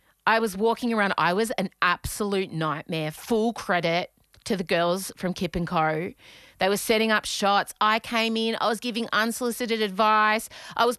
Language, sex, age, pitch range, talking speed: English, female, 30-49, 200-255 Hz, 180 wpm